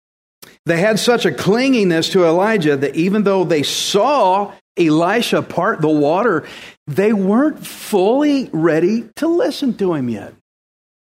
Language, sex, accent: English, male, American